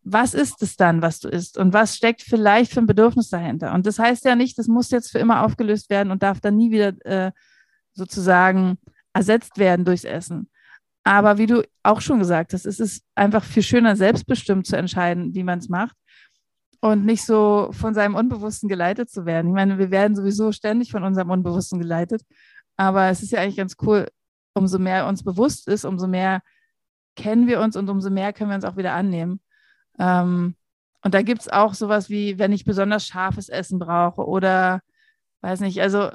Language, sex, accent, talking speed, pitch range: German, female, German, 200 wpm, 185-225 Hz